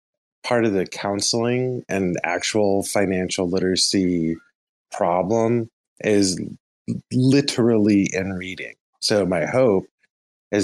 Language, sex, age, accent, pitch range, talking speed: English, male, 20-39, American, 90-115 Hz, 95 wpm